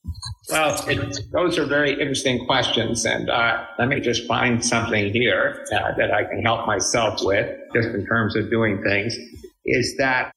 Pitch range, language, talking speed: 115-140 Hz, English, 170 wpm